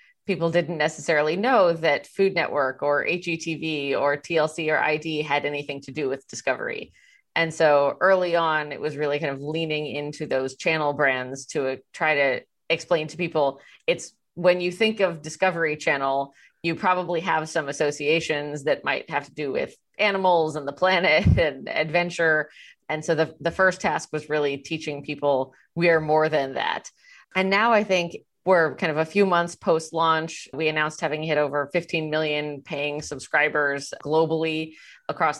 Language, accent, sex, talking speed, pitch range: English, American, female, 170 wpm, 145-170 Hz